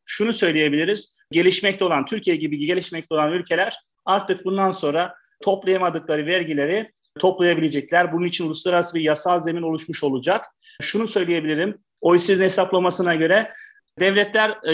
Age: 30-49